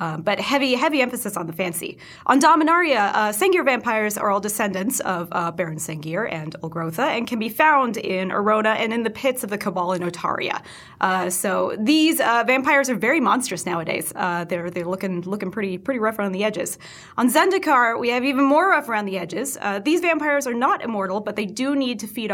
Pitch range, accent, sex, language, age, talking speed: 185-250 Hz, American, female, English, 20-39, 210 wpm